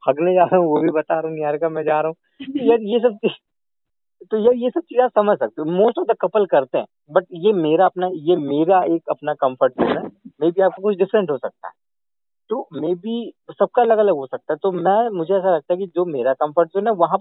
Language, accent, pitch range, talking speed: Hindi, native, 135-195 Hz, 250 wpm